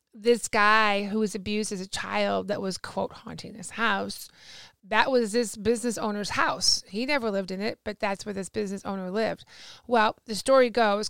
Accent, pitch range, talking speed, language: American, 190-220 Hz, 195 wpm, English